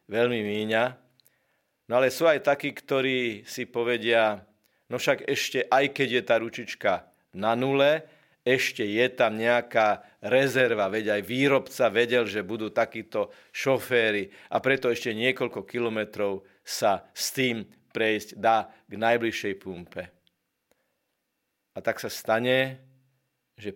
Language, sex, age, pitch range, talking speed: Slovak, male, 40-59, 110-125 Hz, 130 wpm